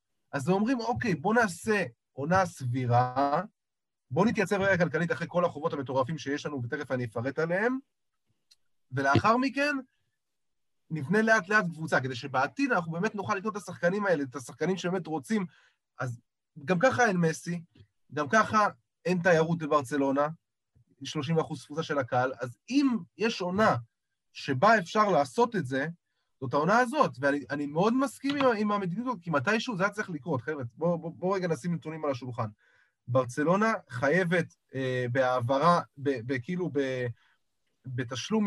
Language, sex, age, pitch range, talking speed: Hebrew, male, 30-49, 135-200 Hz, 145 wpm